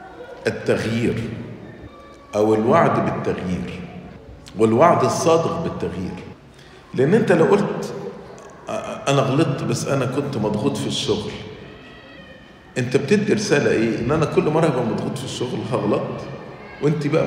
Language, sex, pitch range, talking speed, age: English, male, 110-155 Hz, 120 wpm, 50-69